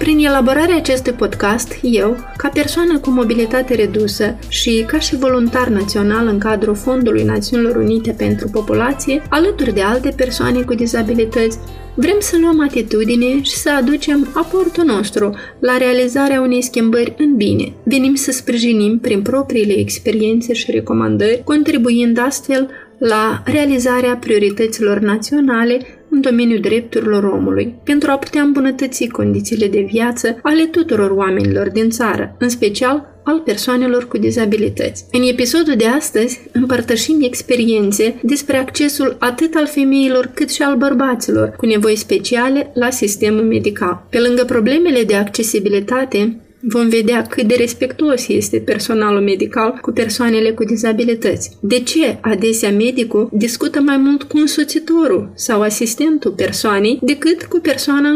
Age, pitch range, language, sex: 30-49, 220-275 Hz, Romanian, female